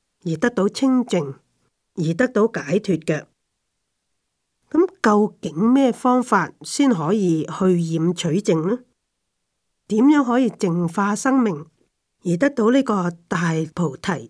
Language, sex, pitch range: Chinese, female, 160-215 Hz